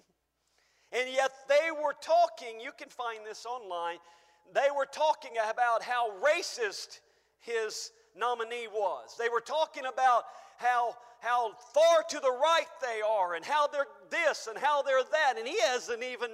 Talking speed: 160 wpm